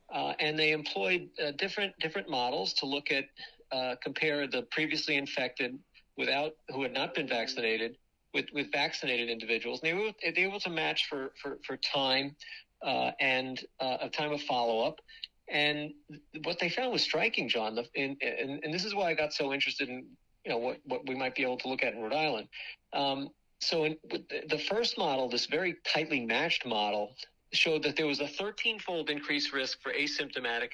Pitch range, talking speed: 130-180 Hz, 200 wpm